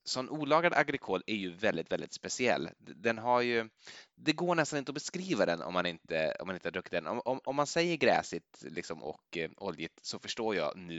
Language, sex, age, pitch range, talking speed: Swedish, male, 20-39, 85-125 Hz, 225 wpm